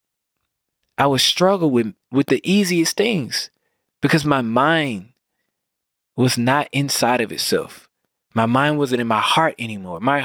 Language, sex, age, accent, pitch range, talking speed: English, male, 20-39, American, 115-155 Hz, 140 wpm